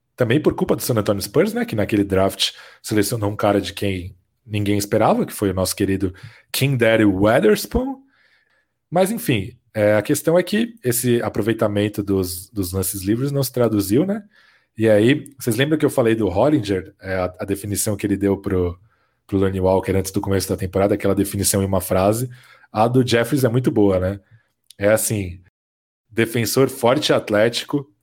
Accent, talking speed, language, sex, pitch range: Brazilian, 180 wpm, Portuguese, male, 100-125 Hz